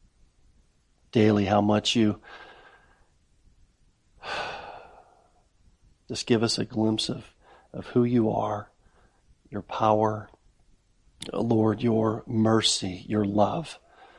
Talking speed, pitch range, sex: 95 wpm, 100-115 Hz, male